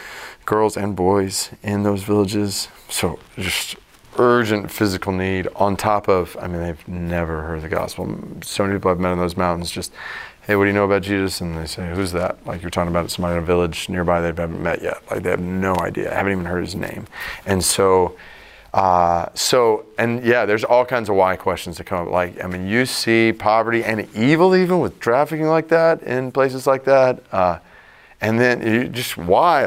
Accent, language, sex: American, English, male